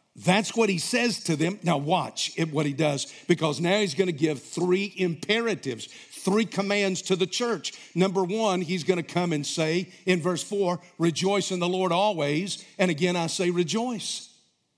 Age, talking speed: 50-69, 185 wpm